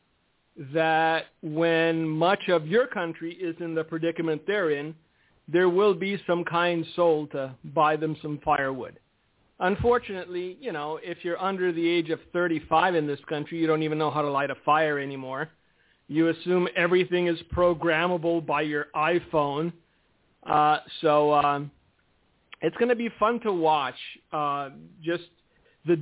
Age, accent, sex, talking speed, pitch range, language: 50-69, American, male, 155 wpm, 155-180 Hz, English